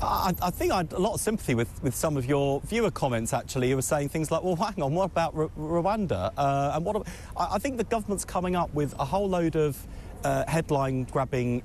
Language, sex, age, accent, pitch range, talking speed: English, male, 40-59, British, 125-175 Hz, 235 wpm